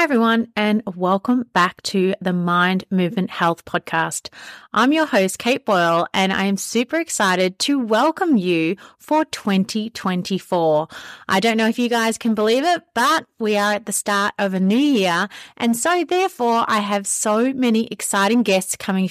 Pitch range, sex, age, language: 185-250 Hz, female, 30-49, English